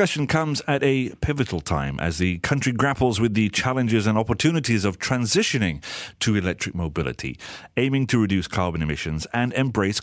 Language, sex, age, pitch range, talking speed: English, male, 40-59, 90-130 Hz, 160 wpm